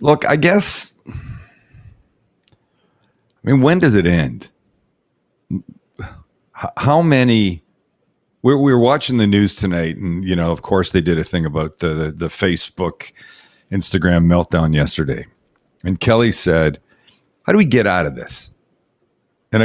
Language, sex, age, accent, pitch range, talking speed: English, male, 50-69, American, 85-125 Hz, 140 wpm